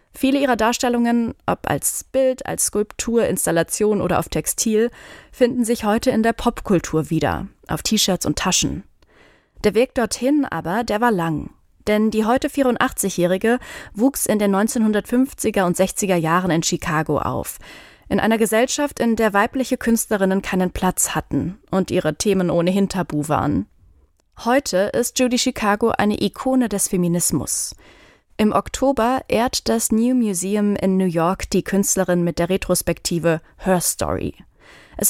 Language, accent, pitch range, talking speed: German, German, 170-235 Hz, 145 wpm